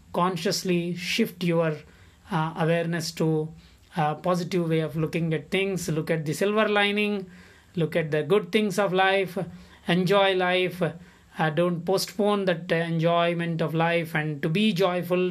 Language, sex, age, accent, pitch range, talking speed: English, male, 20-39, Indian, 165-190 Hz, 150 wpm